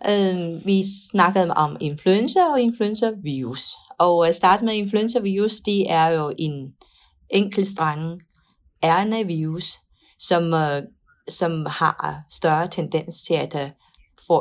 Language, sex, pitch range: Danish, female, 155-195 Hz